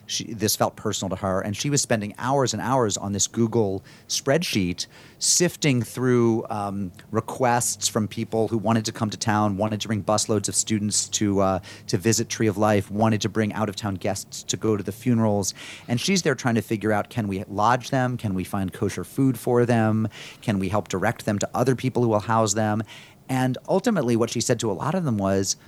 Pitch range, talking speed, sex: 105-125 Hz, 215 wpm, male